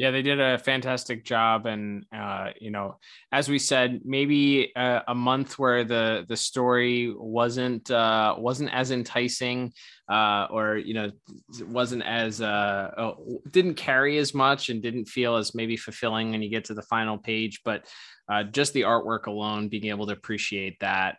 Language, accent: English, American